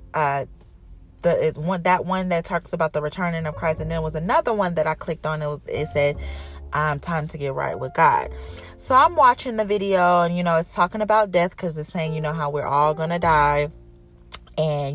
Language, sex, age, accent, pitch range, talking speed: English, female, 30-49, American, 150-190 Hz, 230 wpm